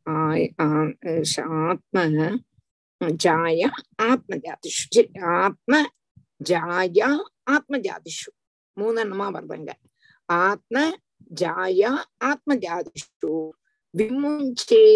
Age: 50-69